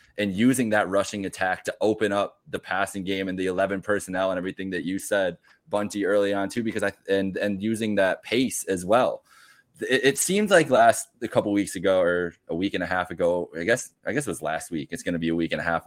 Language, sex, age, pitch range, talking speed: English, male, 20-39, 95-115 Hz, 250 wpm